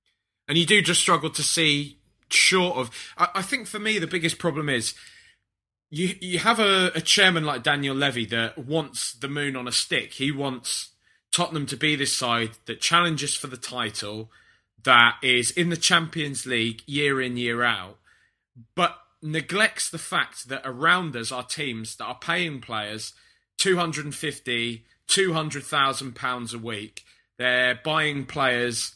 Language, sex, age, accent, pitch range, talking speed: English, male, 20-39, British, 120-175 Hz, 170 wpm